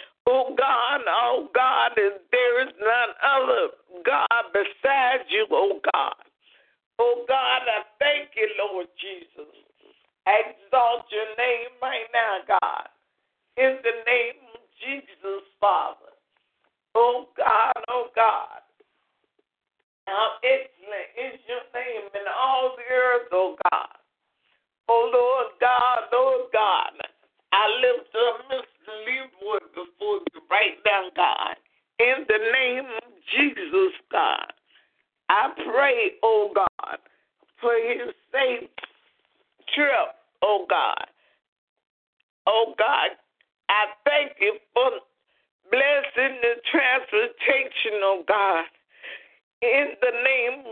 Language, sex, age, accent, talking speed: English, male, 50-69, American, 115 wpm